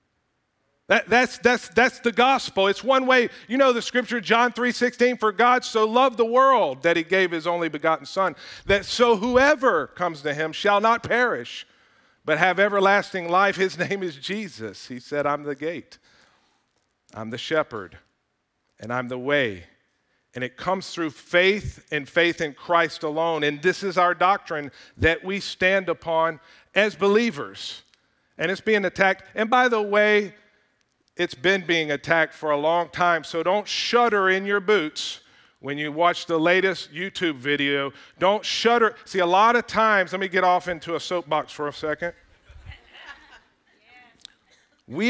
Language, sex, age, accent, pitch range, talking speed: English, male, 50-69, American, 155-210 Hz, 165 wpm